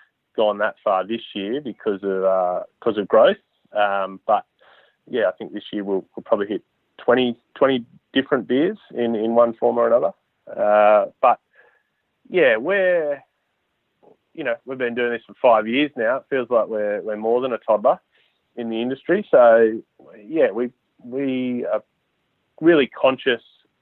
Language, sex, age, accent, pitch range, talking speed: English, male, 30-49, Australian, 105-135 Hz, 165 wpm